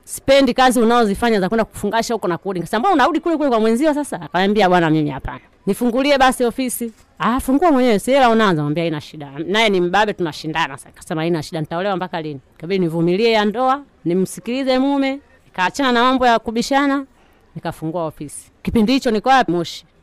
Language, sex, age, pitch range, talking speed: Swahili, female, 30-49, 170-230 Hz, 180 wpm